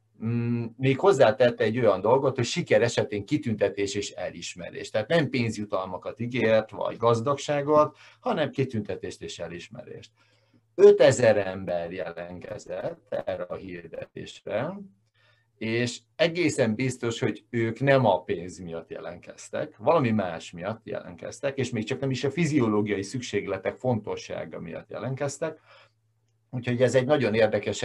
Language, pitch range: Hungarian, 105-135 Hz